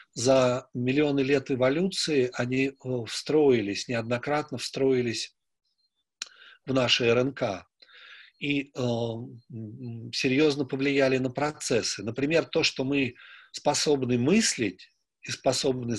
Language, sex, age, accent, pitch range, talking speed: Russian, male, 40-59, native, 125-150 Hz, 95 wpm